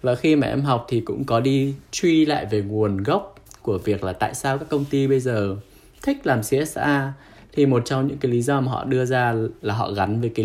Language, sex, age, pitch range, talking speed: Vietnamese, male, 10-29, 105-140 Hz, 245 wpm